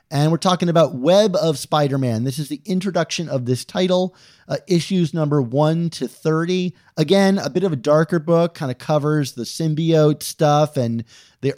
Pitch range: 140-175 Hz